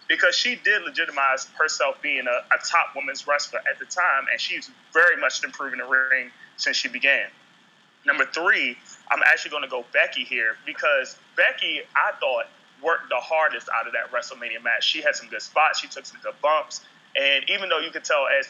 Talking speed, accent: 200 wpm, American